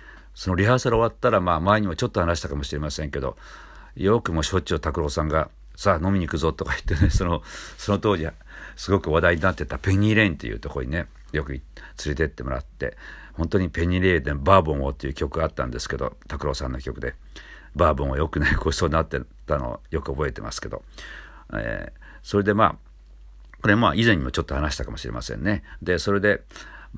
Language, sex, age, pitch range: Japanese, male, 50-69, 70-90 Hz